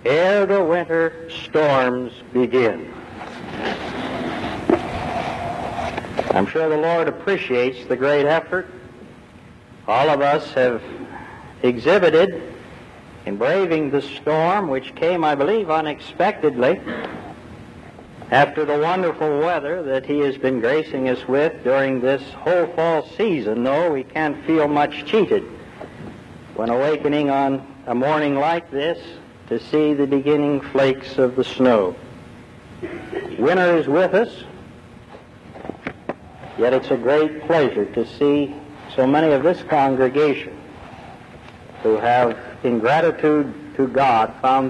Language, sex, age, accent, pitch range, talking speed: English, male, 60-79, American, 130-165 Hz, 115 wpm